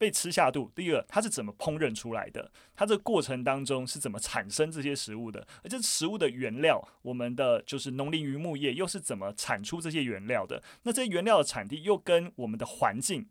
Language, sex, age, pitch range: Chinese, male, 20-39, 115-155 Hz